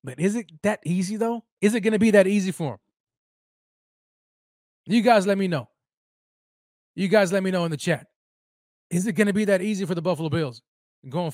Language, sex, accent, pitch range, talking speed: English, male, American, 155-215 Hz, 210 wpm